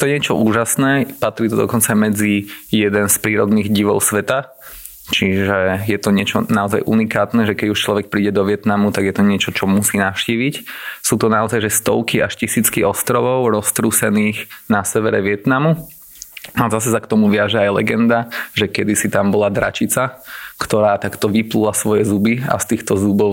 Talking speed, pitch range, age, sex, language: 170 wpm, 100-110 Hz, 20-39, male, Slovak